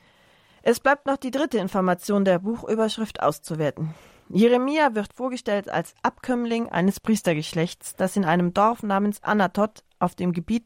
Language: German